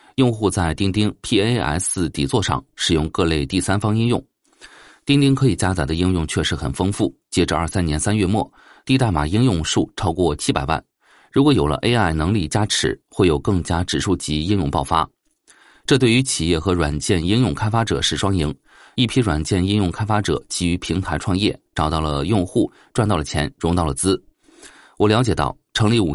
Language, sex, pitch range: Chinese, male, 80-105 Hz